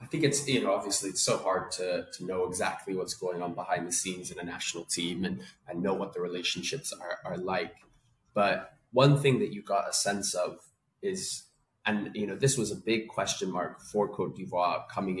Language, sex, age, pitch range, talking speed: English, male, 20-39, 90-115 Hz, 215 wpm